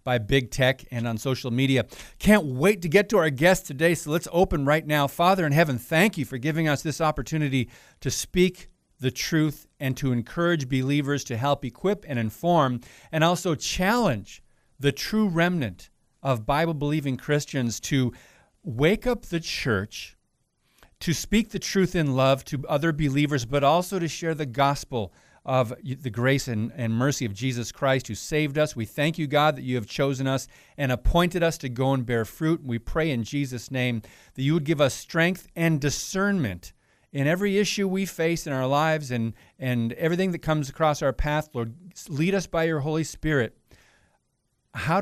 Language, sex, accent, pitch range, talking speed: English, male, American, 125-165 Hz, 185 wpm